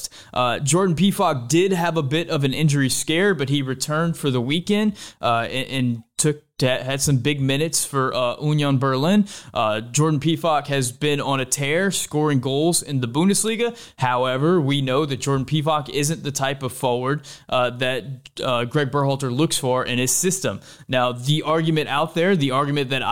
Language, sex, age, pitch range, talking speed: English, male, 20-39, 135-165 Hz, 185 wpm